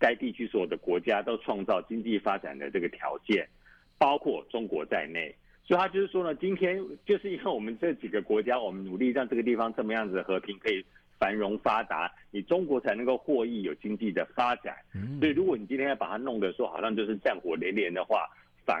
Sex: male